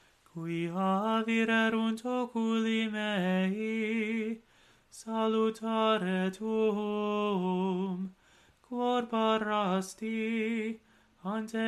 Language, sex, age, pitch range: English, male, 30-49, 190-225 Hz